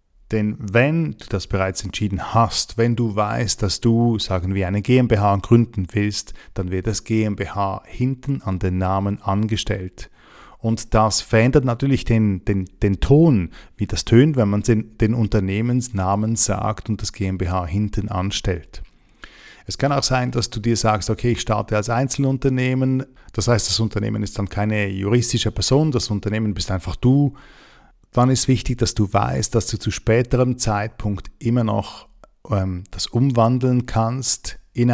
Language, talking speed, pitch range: German, 160 wpm, 100-120 Hz